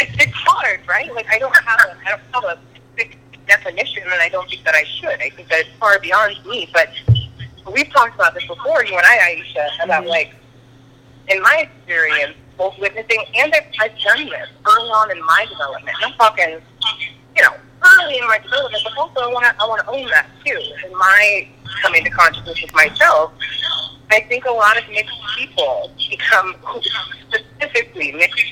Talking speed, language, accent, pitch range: 185 wpm, English, American, 150-225 Hz